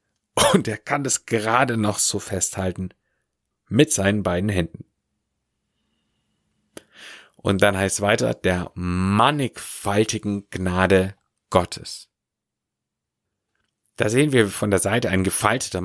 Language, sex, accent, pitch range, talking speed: German, male, German, 90-115 Hz, 110 wpm